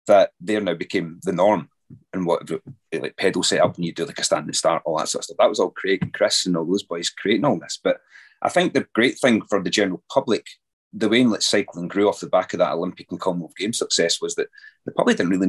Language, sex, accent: English, male, British